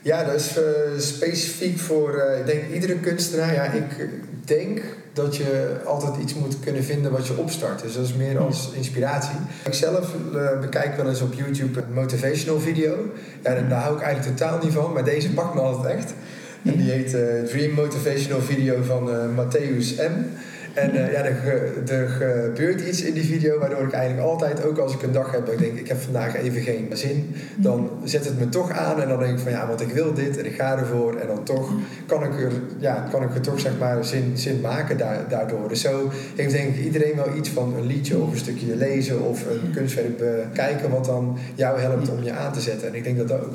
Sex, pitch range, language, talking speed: male, 125-150 Hz, Dutch, 225 wpm